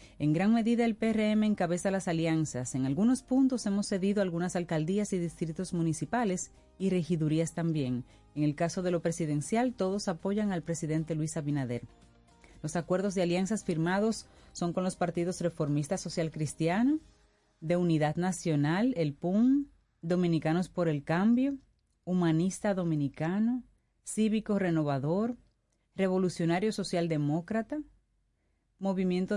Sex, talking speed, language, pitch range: female, 125 wpm, Spanish, 155-200 Hz